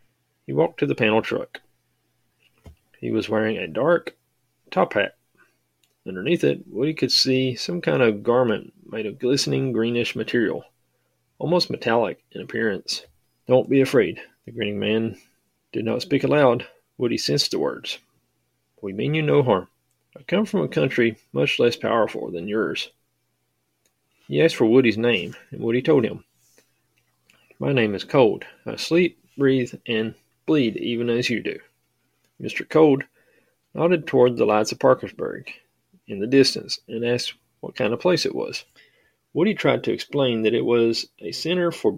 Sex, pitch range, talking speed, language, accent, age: male, 110-140 Hz, 160 wpm, English, American, 30-49